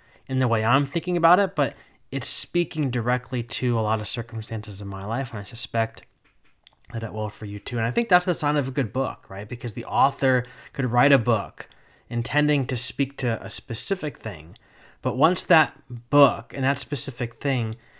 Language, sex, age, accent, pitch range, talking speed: English, male, 20-39, American, 110-140 Hz, 205 wpm